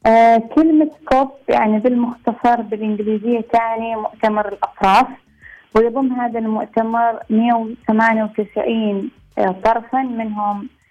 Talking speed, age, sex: 90 wpm, 20-39, female